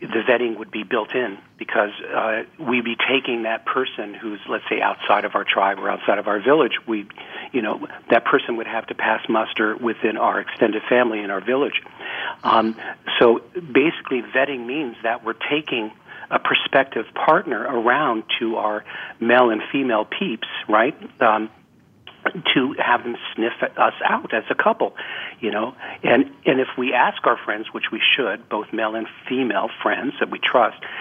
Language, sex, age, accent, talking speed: English, male, 50-69, American, 175 wpm